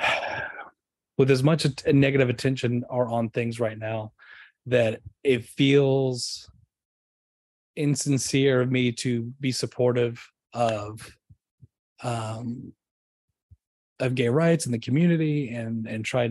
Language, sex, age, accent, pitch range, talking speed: English, male, 30-49, American, 110-130 Hz, 115 wpm